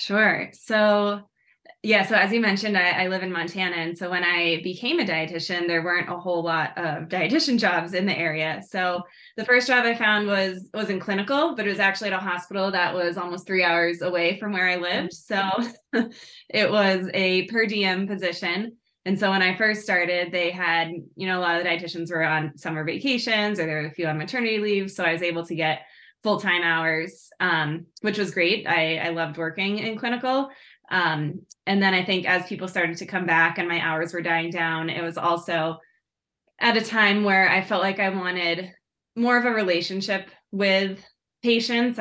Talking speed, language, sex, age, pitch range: 205 wpm, English, female, 20-39, 170-205 Hz